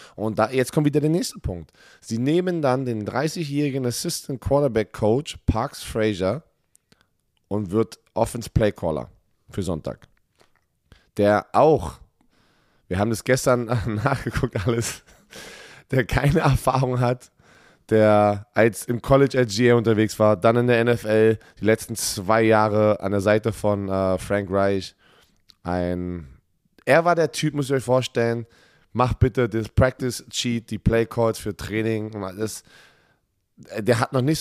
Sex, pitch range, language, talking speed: male, 105-130 Hz, German, 140 wpm